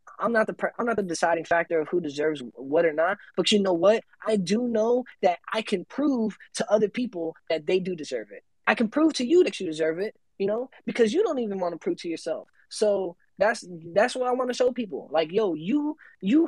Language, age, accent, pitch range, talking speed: English, 20-39, American, 190-260 Hz, 240 wpm